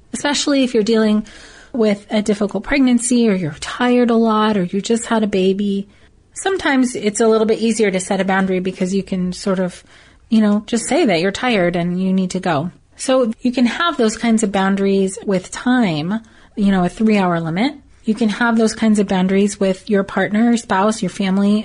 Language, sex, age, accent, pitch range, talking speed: English, female, 30-49, American, 190-230 Hz, 210 wpm